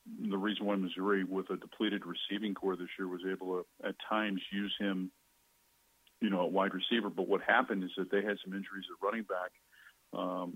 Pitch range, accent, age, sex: 90-100 Hz, American, 40-59, male